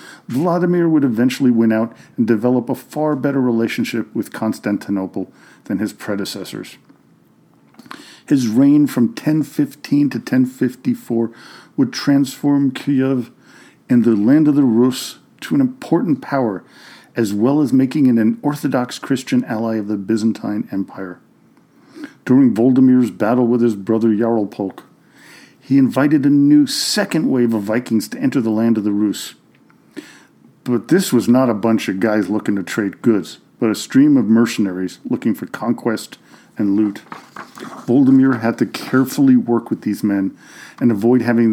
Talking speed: 150 wpm